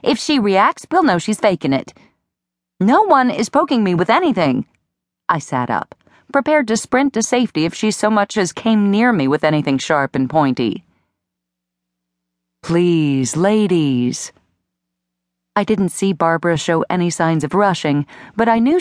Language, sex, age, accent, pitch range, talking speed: English, female, 40-59, American, 140-230 Hz, 160 wpm